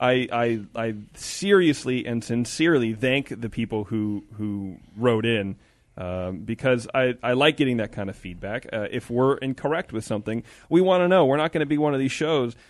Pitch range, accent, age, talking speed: 110-150 Hz, American, 30-49, 200 wpm